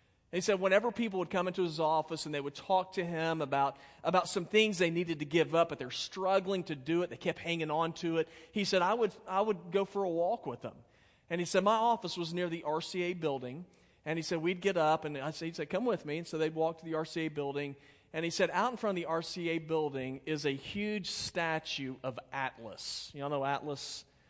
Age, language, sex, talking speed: 40-59, English, male, 245 wpm